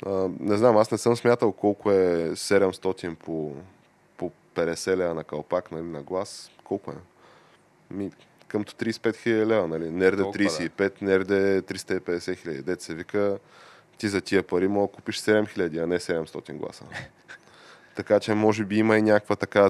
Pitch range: 85-100 Hz